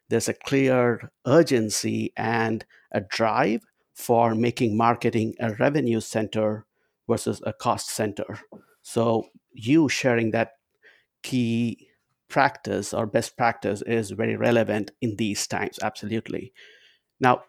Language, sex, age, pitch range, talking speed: English, male, 50-69, 110-125 Hz, 115 wpm